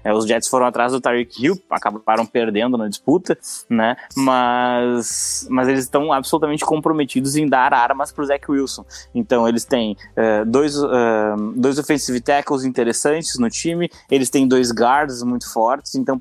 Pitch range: 120-150 Hz